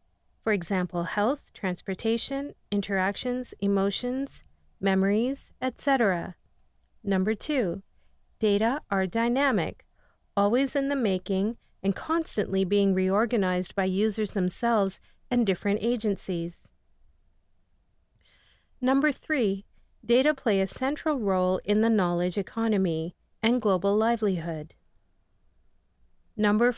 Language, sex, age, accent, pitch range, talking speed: English, female, 40-59, American, 185-230 Hz, 95 wpm